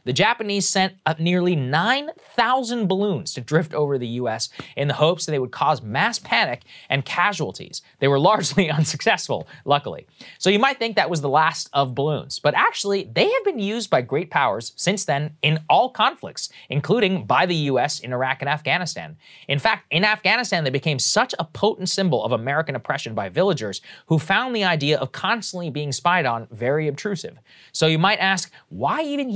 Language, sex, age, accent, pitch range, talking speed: English, male, 30-49, American, 135-190 Hz, 190 wpm